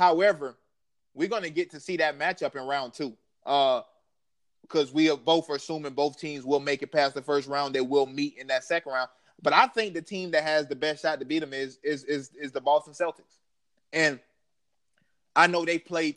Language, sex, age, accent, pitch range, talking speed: English, male, 20-39, American, 150-195 Hz, 220 wpm